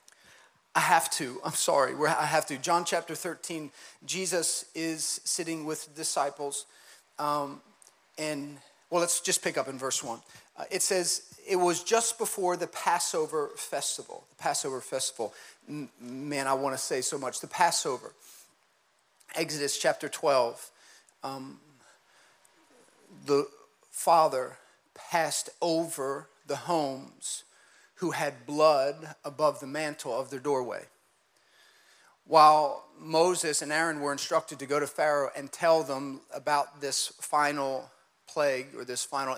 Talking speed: 135 wpm